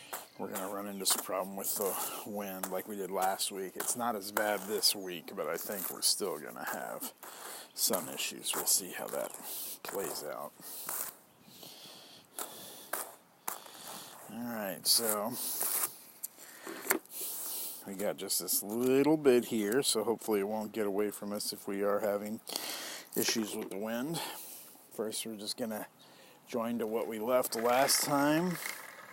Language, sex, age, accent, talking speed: English, male, 50-69, American, 150 wpm